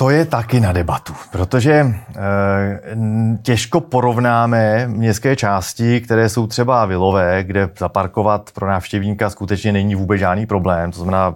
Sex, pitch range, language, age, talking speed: male, 100-115 Hz, Czech, 30-49, 130 wpm